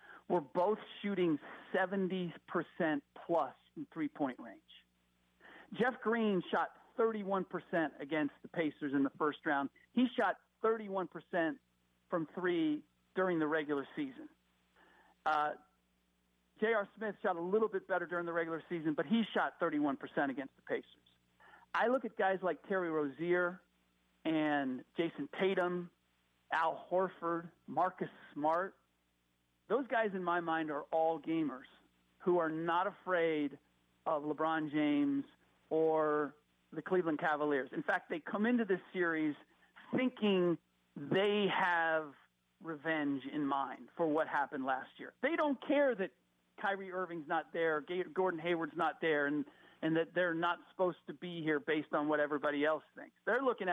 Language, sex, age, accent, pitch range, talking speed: English, male, 50-69, American, 150-185 Hz, 140 wpm